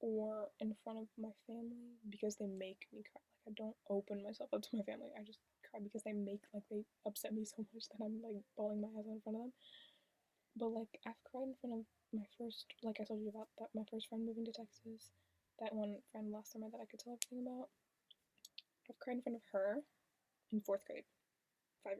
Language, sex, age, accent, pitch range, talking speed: English, female, 10-29, American, 215-245 Hz, 230 wpm